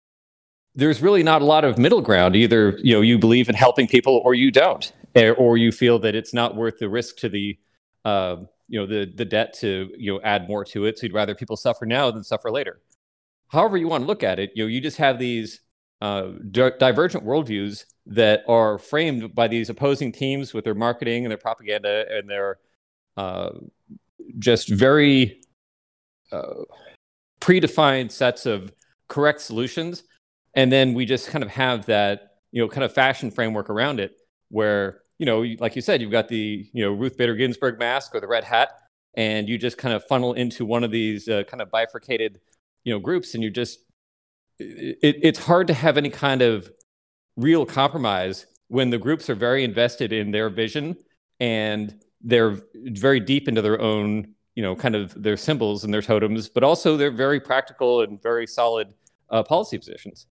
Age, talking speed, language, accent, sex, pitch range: 30-49, 190 wpm, English, American, male, 105-130 Hz